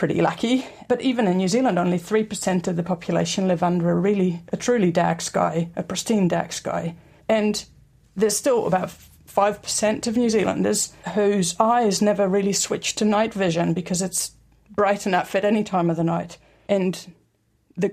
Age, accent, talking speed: 40-59, British, 175 wpm